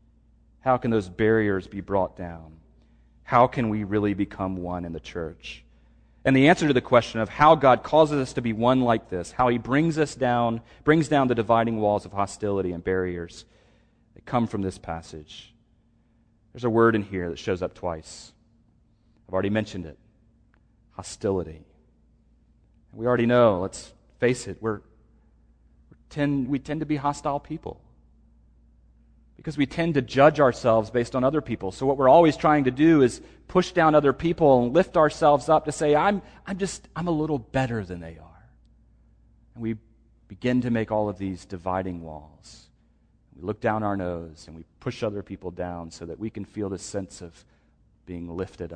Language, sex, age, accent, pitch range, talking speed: English, male, 40-59, American, 90-125 Hz, 185 wpm